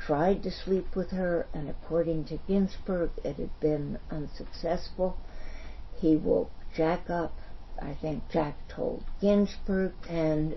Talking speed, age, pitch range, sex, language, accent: 130 wpm, 60-79, 155-185 Hz, female, English, American